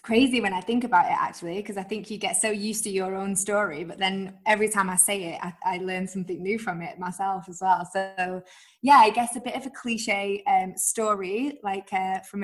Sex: female